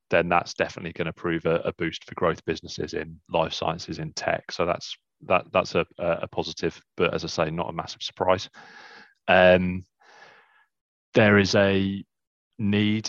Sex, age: male, 30-49